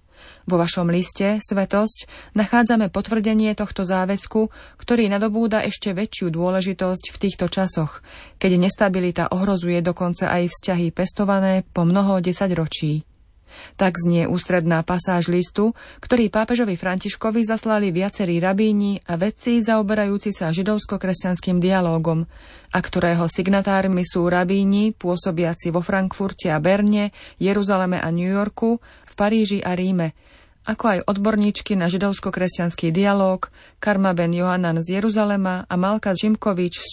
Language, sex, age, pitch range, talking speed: Slovak, female, 30-49, 175-205 Hz, 125 wpm